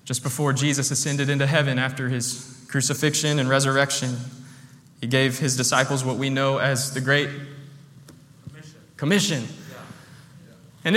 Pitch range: 135-170 Hz